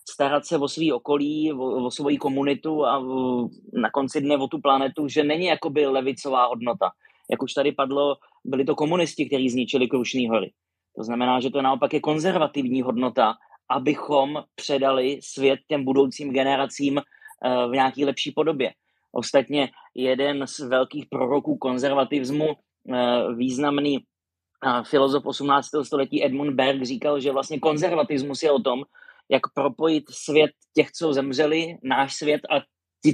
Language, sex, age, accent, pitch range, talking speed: Czech, male, 30-49, native, 130-150 Hz, 150 wpm